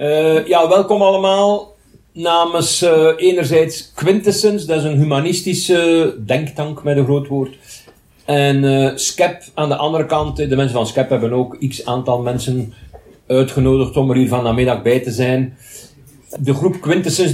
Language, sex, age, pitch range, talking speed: Dutch, male, 50-69, 110-150 Hz, 155 wpm